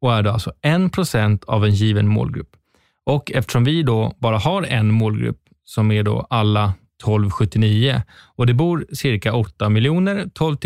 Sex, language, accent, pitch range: male, Swedish, native, 110-145 Hz